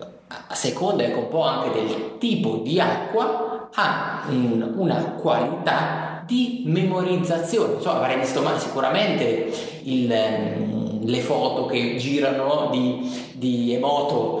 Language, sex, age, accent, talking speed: Italian, male, 30-49, native, 135 wpm